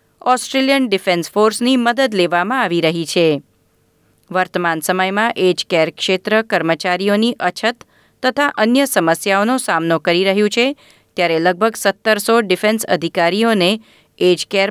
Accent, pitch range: native, 170-225 Hz